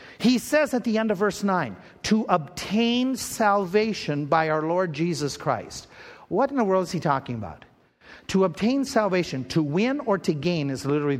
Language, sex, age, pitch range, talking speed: English, male, 50-69, 160-220 Hz, 180 wpm